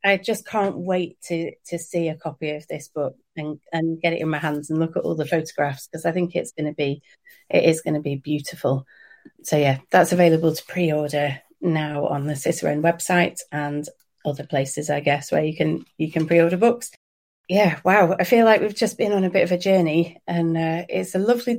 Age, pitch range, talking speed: 30-49, 150-185 Hz, 220 wpm